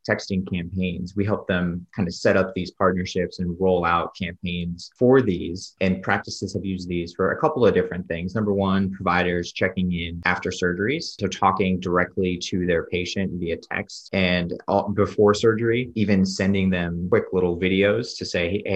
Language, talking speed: English, 175 wpm